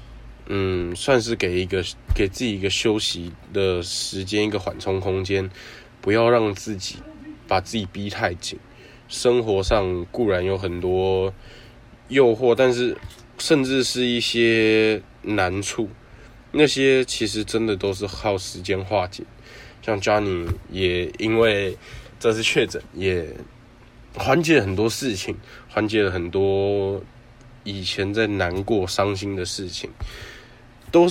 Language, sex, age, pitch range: Chinese, male, 20-39, 95-120 Hz